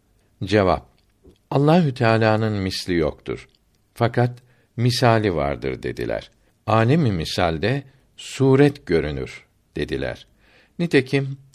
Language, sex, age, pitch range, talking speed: Turkish, male, 60-79, 100-130 Hz, 80 wpm